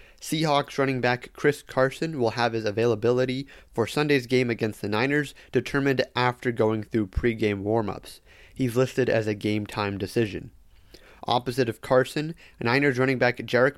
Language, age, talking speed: English, 30-49, 150 wpm